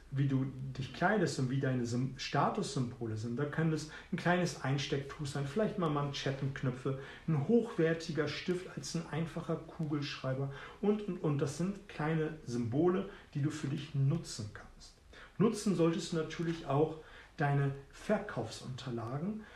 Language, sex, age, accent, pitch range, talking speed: German, male, 40-59, German, 135-175 Hz, 140 wpm